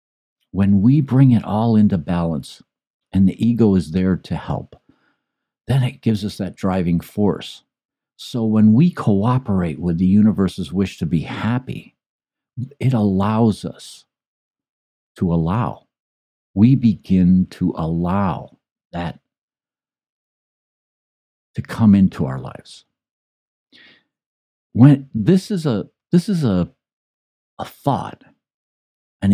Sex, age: male, 60-79